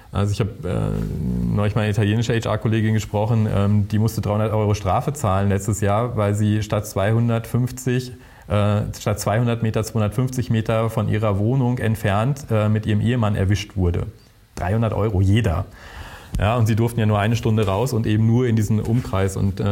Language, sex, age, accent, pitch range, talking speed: German, male, 30-49, German, 100-110 Hz, 175 wpm